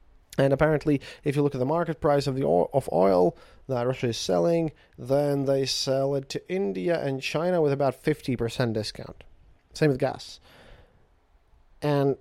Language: English